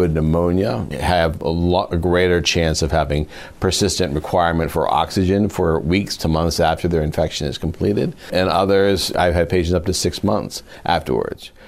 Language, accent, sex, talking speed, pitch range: English, American, male, 160 wpm, 80-95 Hz